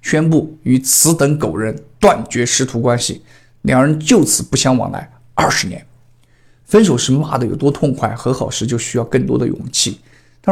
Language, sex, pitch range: Chinese, male, 120-150 Hz